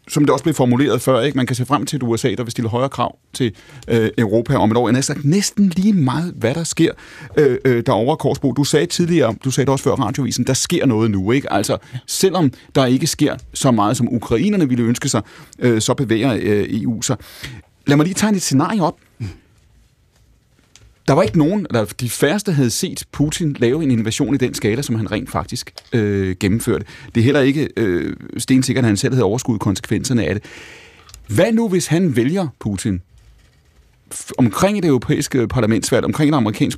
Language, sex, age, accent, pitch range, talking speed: Danish, male, 30-49, native, 115-150 Hz, 205 wpm